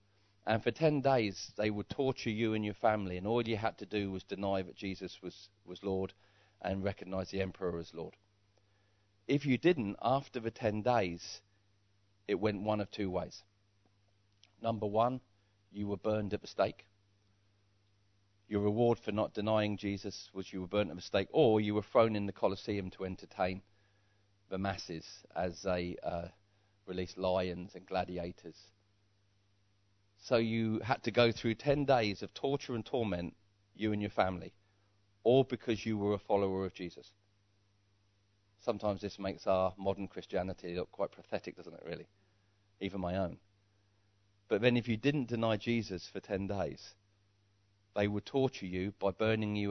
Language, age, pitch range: English, 40-59, 95-105 Hz